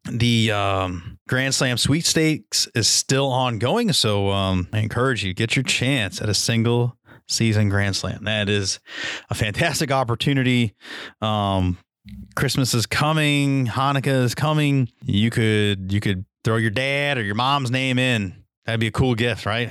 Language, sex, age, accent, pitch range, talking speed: English, male, 30-49, American, 105-130 Hz, 165 wpm